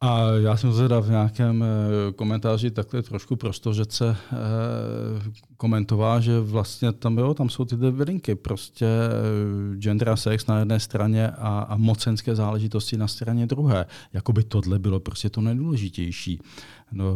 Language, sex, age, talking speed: Czech, male, 40-59, 135 wpm